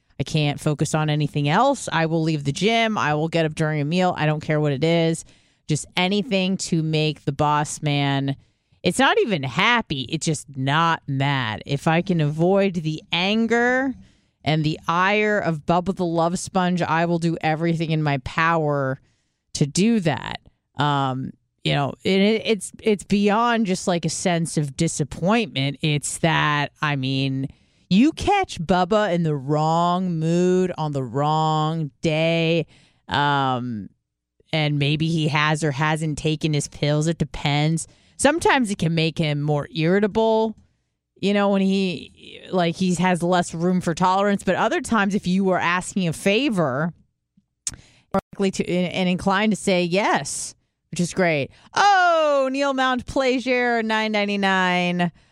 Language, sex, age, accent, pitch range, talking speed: English, female, 30-49, American, 150-195 Hz, 155 wpm